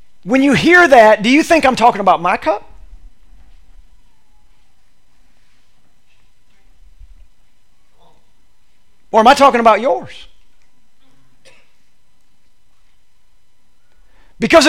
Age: 40-59